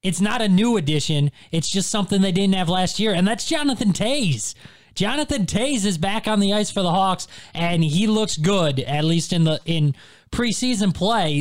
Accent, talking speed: American, 200 wpm